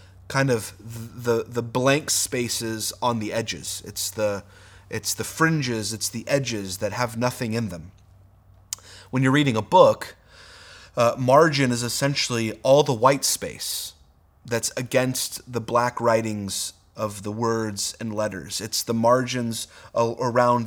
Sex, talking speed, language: male, 140 wpm, English